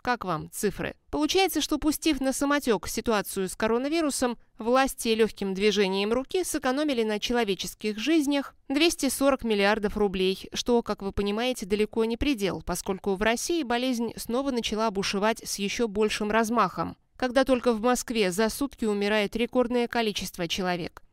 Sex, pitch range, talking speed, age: female, 200-250 Hz, 140 wpm, 20-39